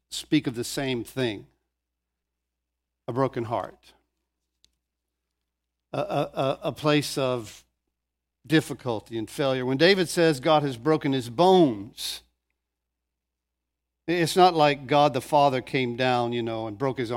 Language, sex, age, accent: English, male, 60-79, American